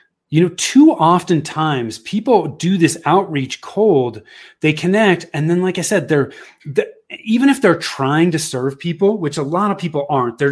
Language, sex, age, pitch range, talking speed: English, male, 30-49, 140-195 Hz, 190 wpm